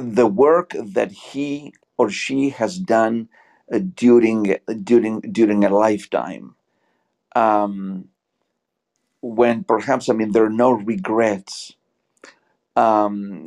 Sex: male